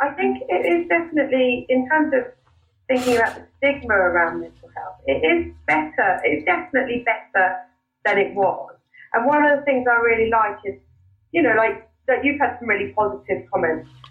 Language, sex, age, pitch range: English, female, 30-49, 175-240 Hz